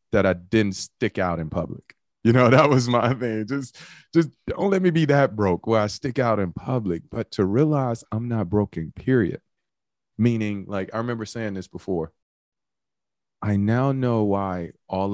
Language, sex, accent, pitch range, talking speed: English, male, American, 90-120 Hz, 180 wpm